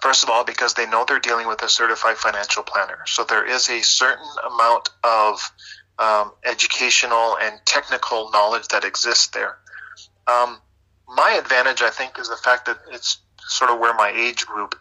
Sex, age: male, 30-49